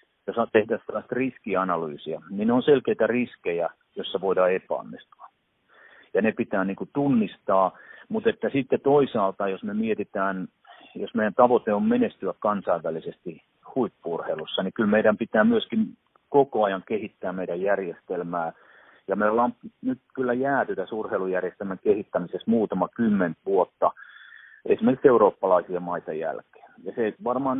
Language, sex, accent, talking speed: Finnish, male, native, 130 wpm